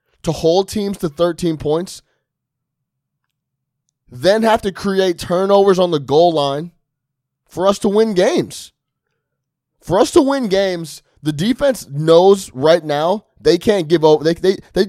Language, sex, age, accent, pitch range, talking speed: English, male, 20-39, American, 135-180 Hz, 150 wpm